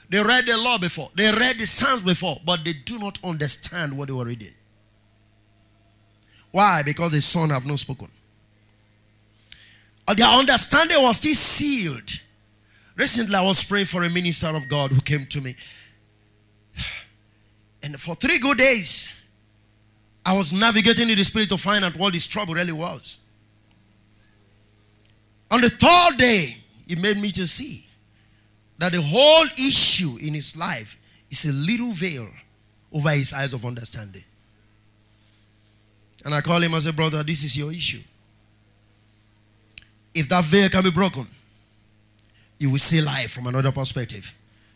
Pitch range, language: 105-175 Hz, English